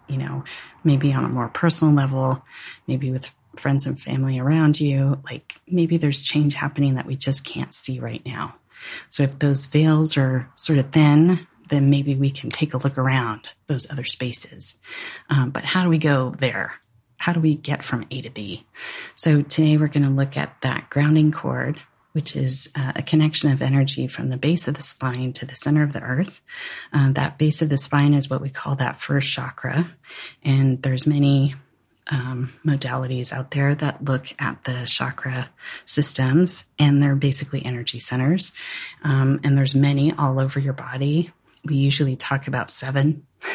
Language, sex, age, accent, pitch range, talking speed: English, female, 30-49, American, 130-150 Hz, 185 wpm